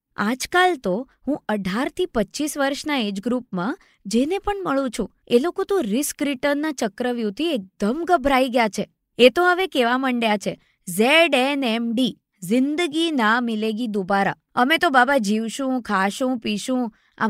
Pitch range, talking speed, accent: 220-300 Hz, 140 wpm, native